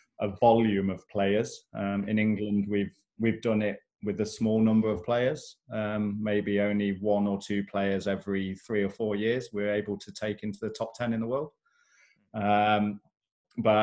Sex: male